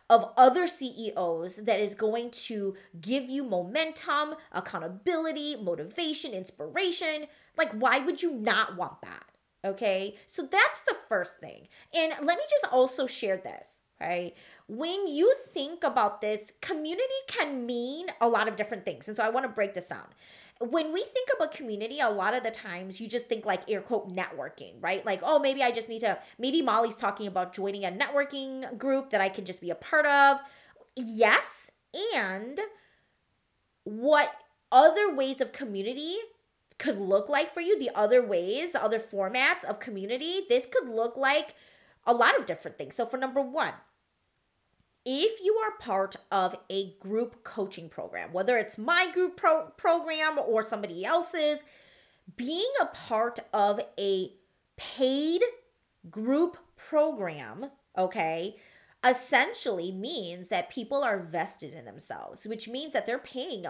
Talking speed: 155 wpm